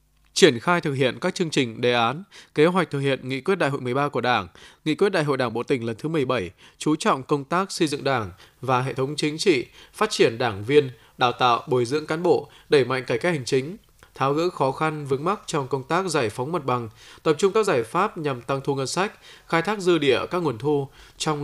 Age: 20-39